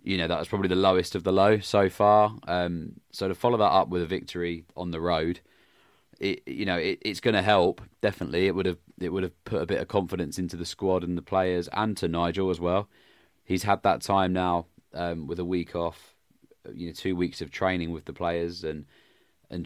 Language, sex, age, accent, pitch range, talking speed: English, male, 20-39, British, 85-100 Hz, 230 wpm